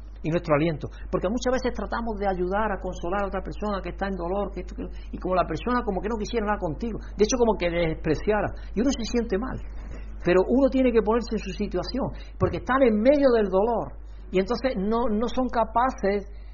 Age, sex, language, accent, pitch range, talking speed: 60-79, male, Spanish, Spanish, 175-235 Hz, 225 wpm